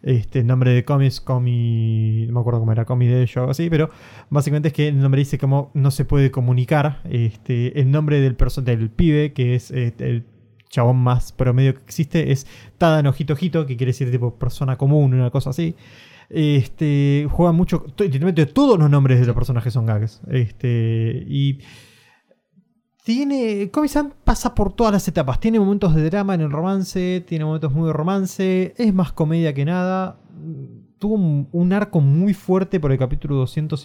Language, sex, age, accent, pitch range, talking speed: Spanish, male, 20-39, Argentinian, 125-160 Hz, 180 wpm